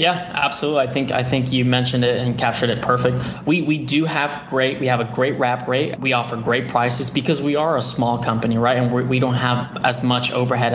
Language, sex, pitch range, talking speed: English, male, 120-150 Hz, 245 wpm